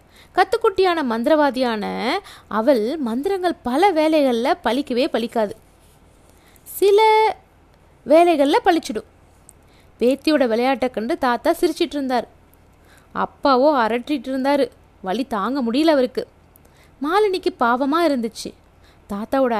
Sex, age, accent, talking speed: female, 20-39, native, 85 wpm